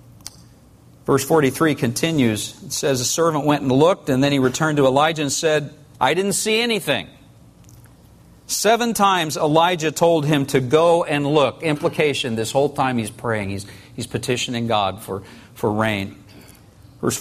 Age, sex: 50-69, male